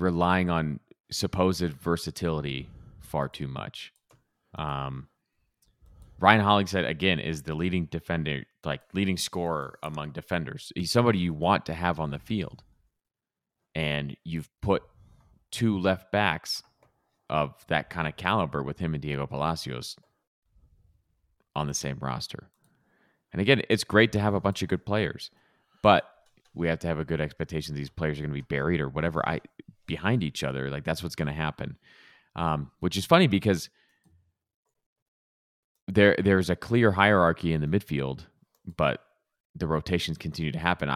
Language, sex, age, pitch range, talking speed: English, male, 30-49, 75-95 Hz, 155 wpm